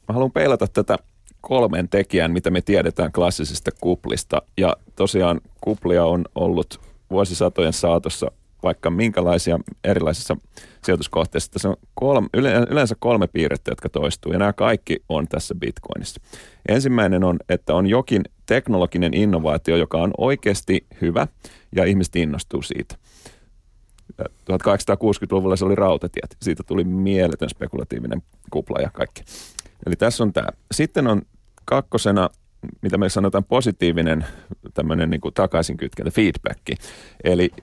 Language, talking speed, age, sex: Finnish, 125 wpm, 30-49, male